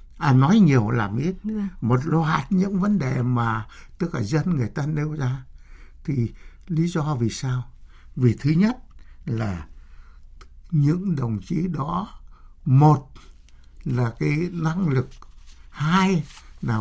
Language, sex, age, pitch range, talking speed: Vietnamese, male, 60-79, 120-200 Hz, 135 wpm